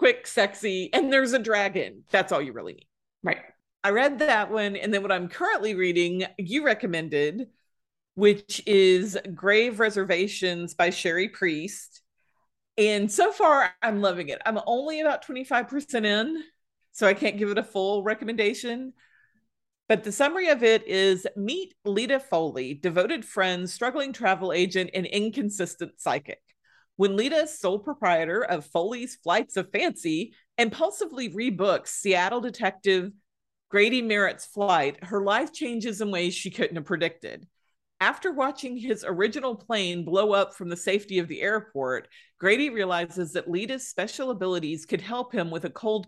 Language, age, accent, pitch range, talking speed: English, 40-59, American, 185-245 Hz, 155 wpm